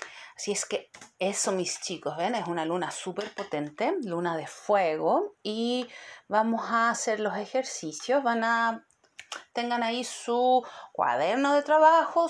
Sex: female